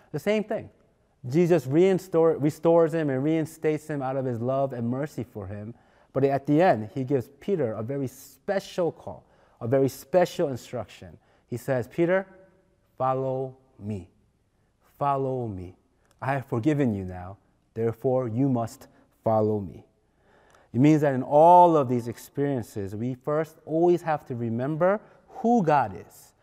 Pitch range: 115-155 Hz